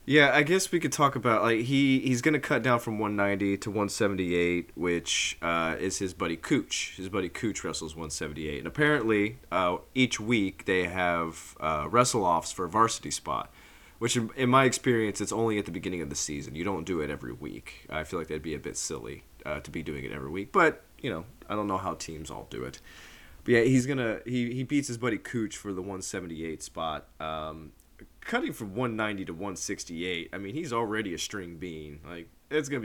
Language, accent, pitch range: English, American, 85-125 Hz